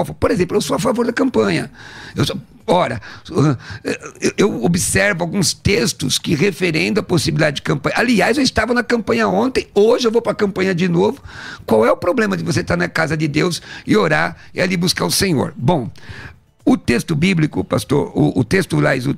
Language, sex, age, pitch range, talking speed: Portuguese, male, 50-69, 165-210 Hz, 195 wpm